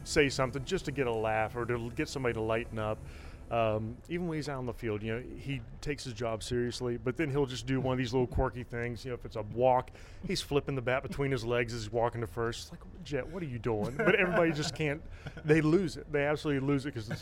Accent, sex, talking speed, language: American, male, 270 wpm, English